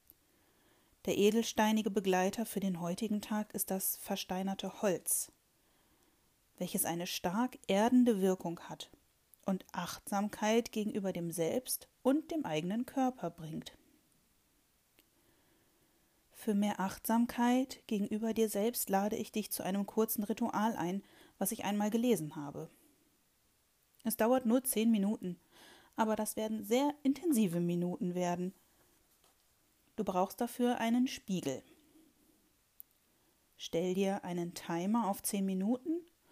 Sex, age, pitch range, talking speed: female, 30-49, 190-245 Hz, 115 wpm